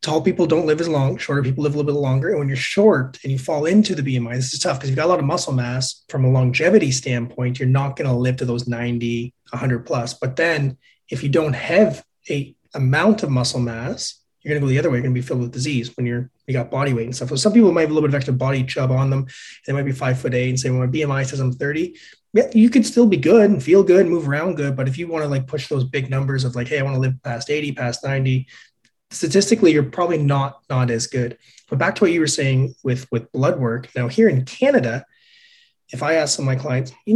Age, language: 30-49, English